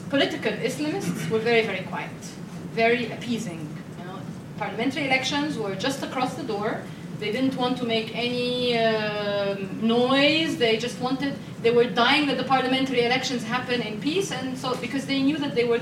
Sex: female